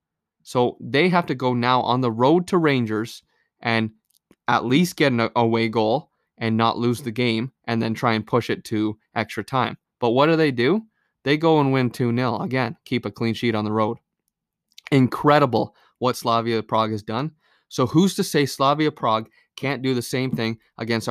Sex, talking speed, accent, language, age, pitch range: male, 195 wpm, American, English, 20-39, 115-140 Hz